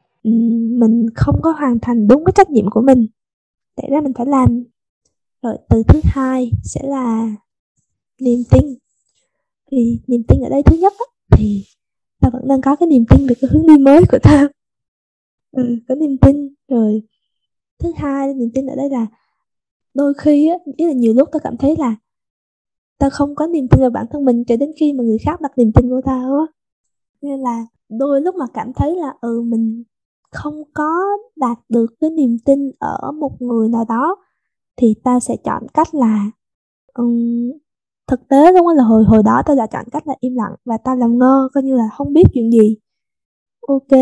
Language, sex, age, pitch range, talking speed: Vietnamese, female, 20-39, 230-285 Hz, 200 wpm